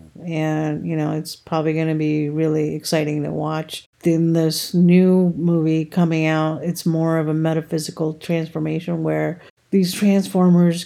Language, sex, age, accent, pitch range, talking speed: English, female, 50-69, American, 155-170 Hz, 150 wpm